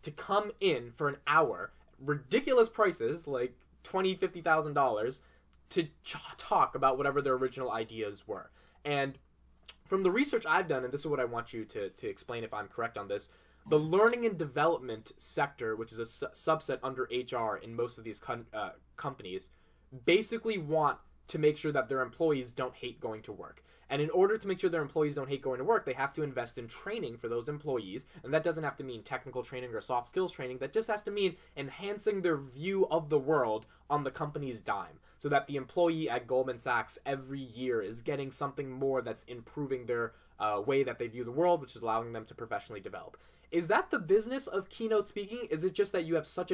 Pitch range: 125-170 Hz